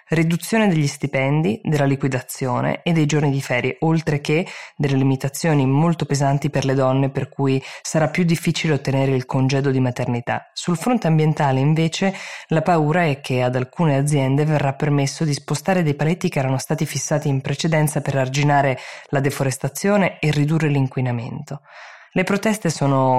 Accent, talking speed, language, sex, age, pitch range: native, 160 wpm, Italian, female, 20-39, 130-155 Hz